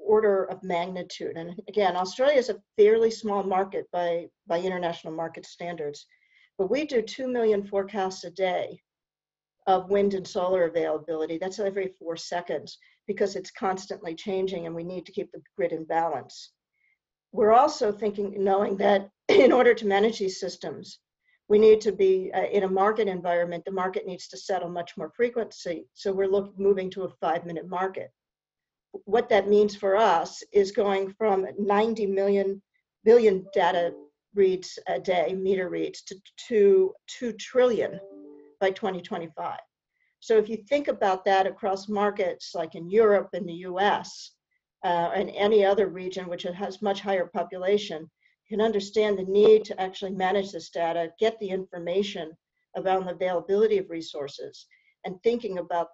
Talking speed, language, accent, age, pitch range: 160 wpm, English, American, 50-69, 180-215 Hz